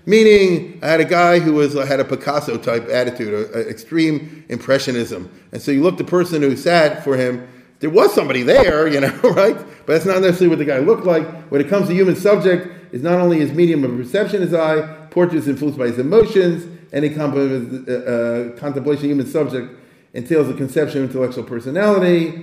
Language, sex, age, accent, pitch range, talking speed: English, male, 50-69, American, 145-195 Hz, 200 wpm